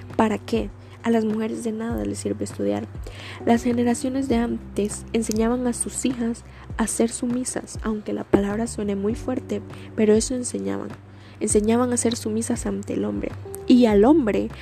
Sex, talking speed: female, 165 wpm